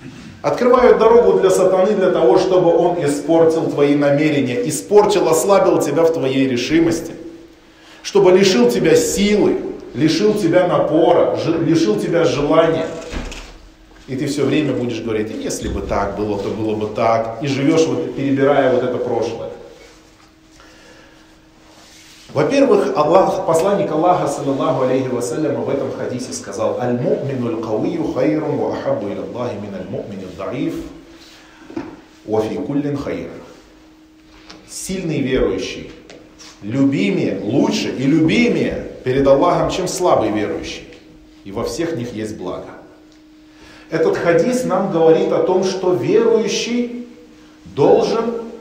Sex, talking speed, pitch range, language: male, 100 wpm, 130-190 Hz, Russian